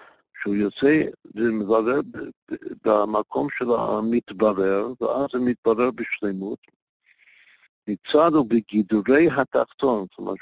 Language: Hebrew